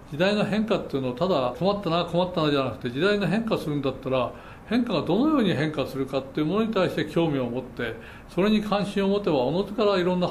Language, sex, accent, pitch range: Japanese, male, native, 135-185 Hz